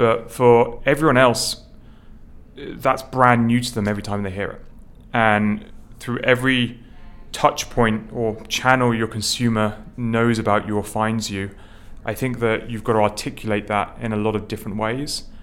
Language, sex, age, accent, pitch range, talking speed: English, male, 30-49, British, 105-115 Hz, 165 wpm